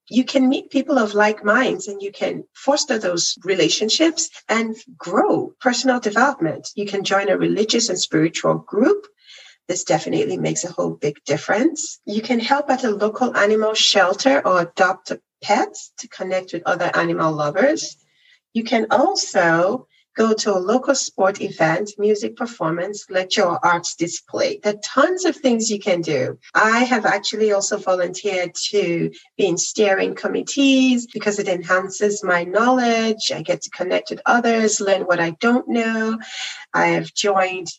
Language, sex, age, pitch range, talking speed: English, female, 40-59, 185-250 Hz, 160 wpm